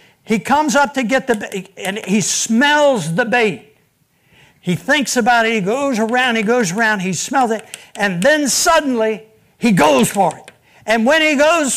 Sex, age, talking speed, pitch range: male, 60-79, 185 wpm, 190-260 Hz